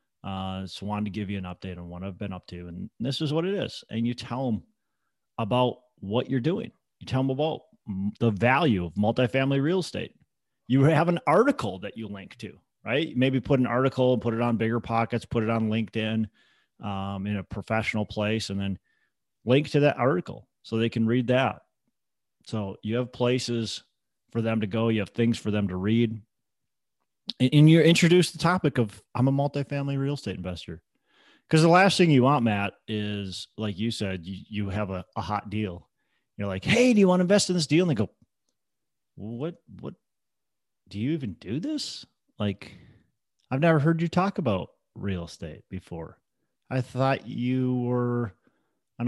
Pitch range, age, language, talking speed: 105-140 Hz, 30-49, English, 190 wpm